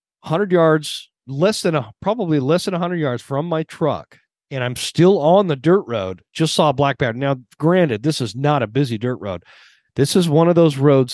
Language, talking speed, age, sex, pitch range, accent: English, 220 wpm, 40-59, male, 120-150 Hz, American